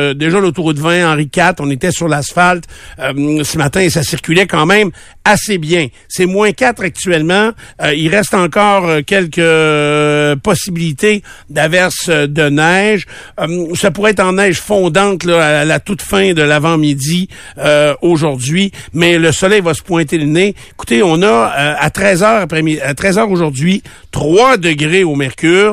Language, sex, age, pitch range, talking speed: French, male, 60-79, 150-190 Hz, 150 wpm